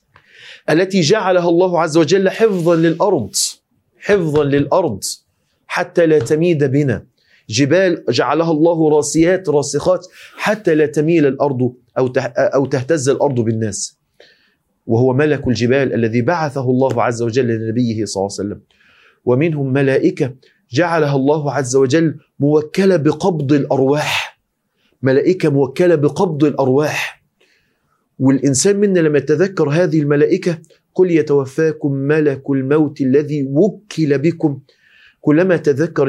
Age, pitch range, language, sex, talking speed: 40-59, 135-160 Hz, Arabic, male, 110 wpm